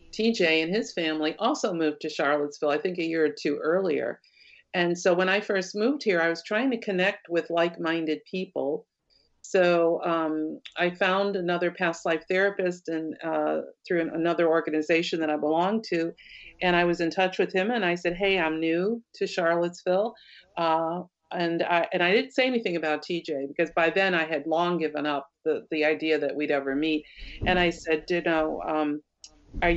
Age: 50-69